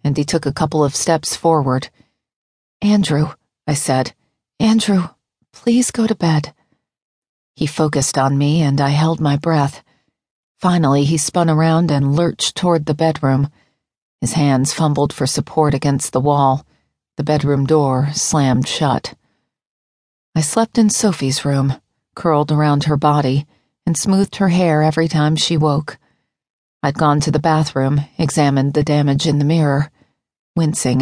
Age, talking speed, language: 40-59, 145 wpm, English